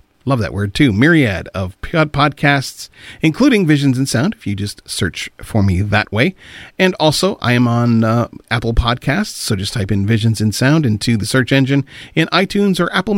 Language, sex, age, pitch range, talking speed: English, male, 40-59, 110-145 Hz, 190 wpm